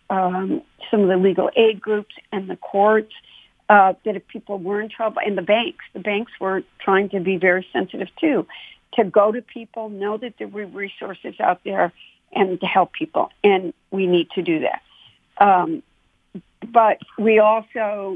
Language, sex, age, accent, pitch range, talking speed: English, female, 60-79, American, 185-215 Hz, 180 wpm